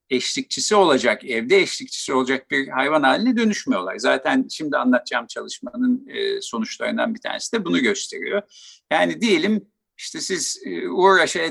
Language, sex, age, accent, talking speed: Turkish, male, 50-69, native, 125 wpm